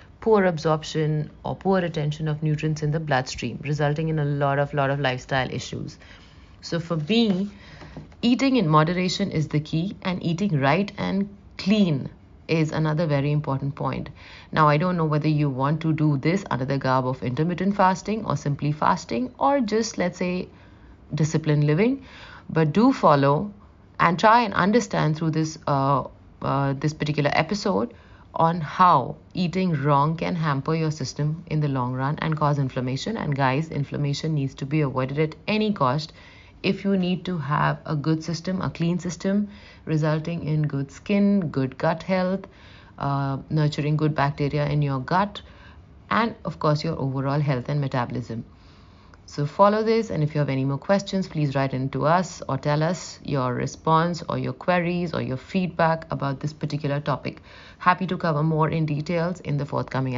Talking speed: 175 wpm